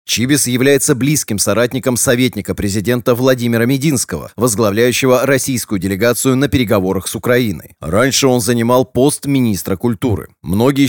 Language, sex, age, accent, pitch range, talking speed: Russian, male, 30-49, native, 110-140 Hz, 120 wpm